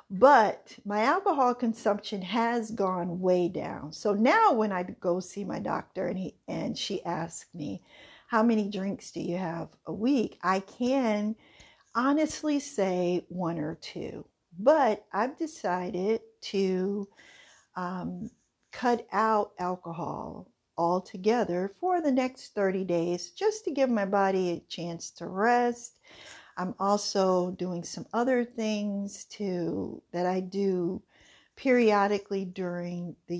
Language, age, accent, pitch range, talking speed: English, 50-69, American, 175-225 Hz, 130 wpm